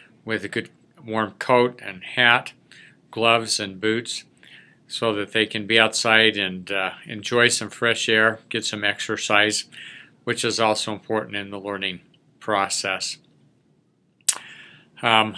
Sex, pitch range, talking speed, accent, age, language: male, 105-120 Hz, 135 wpm, American, 50-69, English